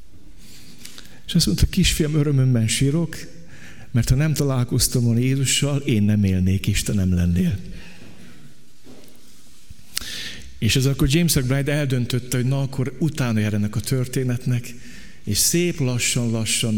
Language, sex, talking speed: Hungarian, male, 120 wpm